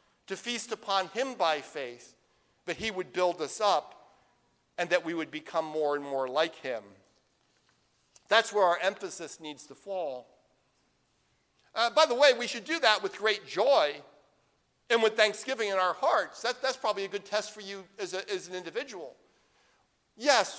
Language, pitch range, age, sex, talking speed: English, 155-225 Hz, 50-69, male, 175 wpm